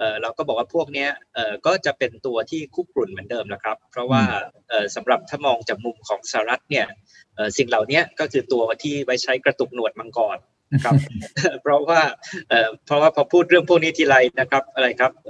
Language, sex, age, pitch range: Thai, male, 20-39, 115-140 Hz